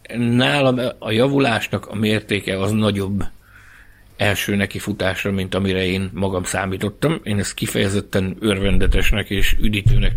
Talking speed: 125 wpm